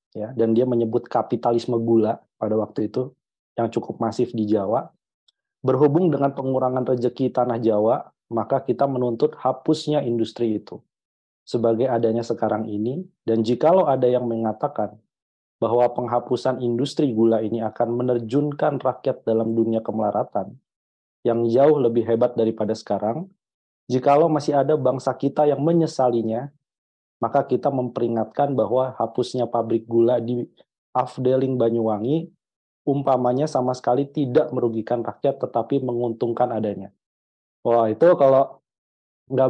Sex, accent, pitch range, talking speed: male, native, 110-130 Hz, 125 wpm